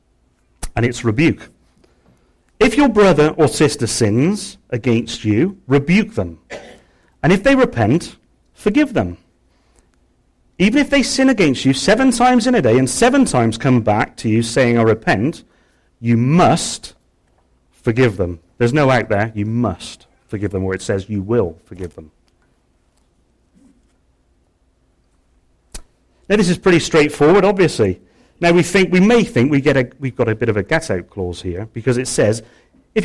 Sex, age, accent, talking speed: male, 40-59, British, 160 wpm